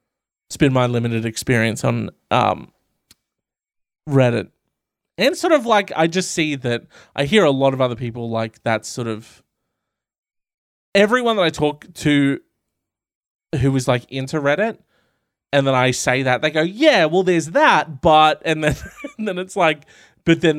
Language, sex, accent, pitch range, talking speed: English, male, Australian, 125-165 Hz, 165 wpm